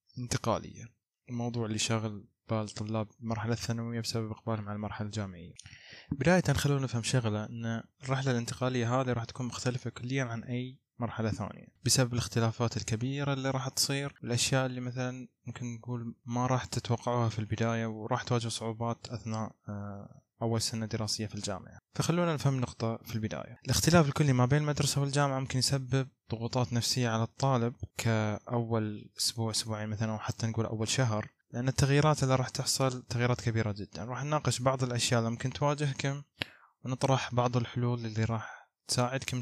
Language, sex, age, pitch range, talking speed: Arabic, male, 20-39, 110-130 Hz, 155 wpm